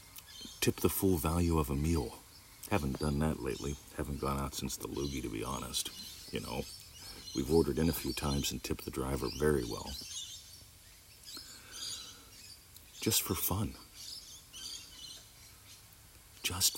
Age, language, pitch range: 50-69, English, 75-100 Hz